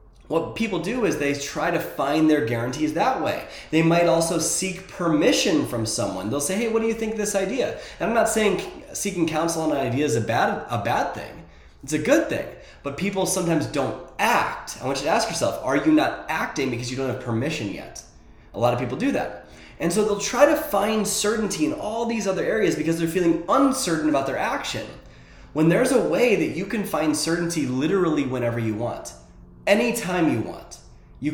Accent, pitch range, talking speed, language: American, 130-190 Hz, 210 wpm, English